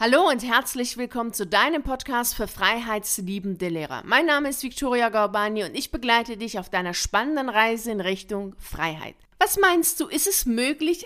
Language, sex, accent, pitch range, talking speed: German, female, German, 200-255 Hz, 175 wpm